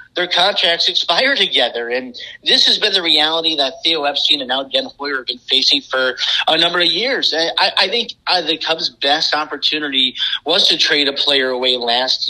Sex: male